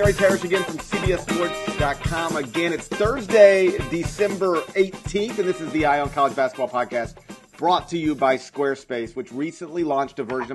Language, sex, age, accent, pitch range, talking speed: English, male, 40-59, American, 130-180 Hz, 160 wpm